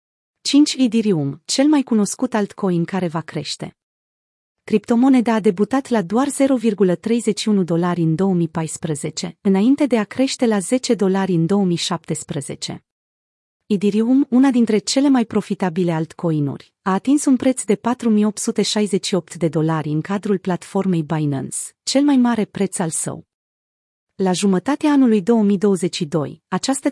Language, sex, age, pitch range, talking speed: Romanian, female, 30-49, 180-235 Hz, 125 wpm